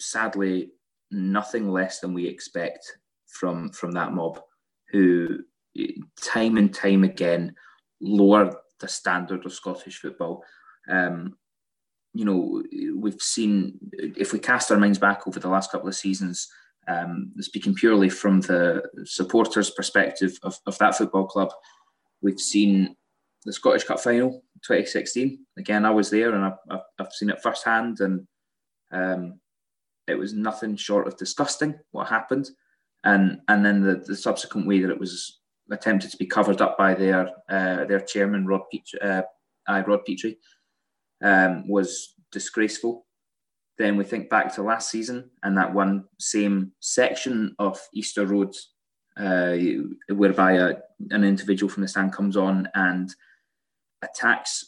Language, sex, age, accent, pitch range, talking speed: English, male, 20-39, British, 95-110 Hz, 145 wpm